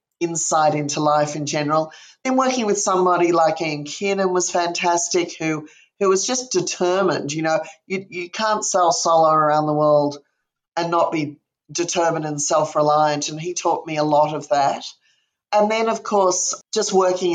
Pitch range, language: 150-175 Hz, English